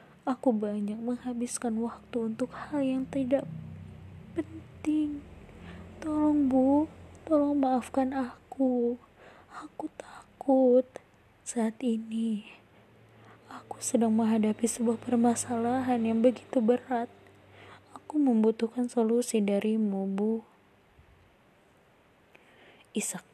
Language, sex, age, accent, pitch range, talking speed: Indonesian, female, 20-39, native, 185-230 Hz, 80 wpm